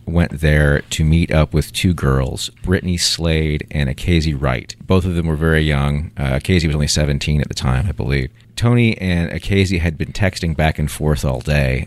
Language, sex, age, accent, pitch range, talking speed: English, male, 40-59, American, 75-95 Hz, 200 wpm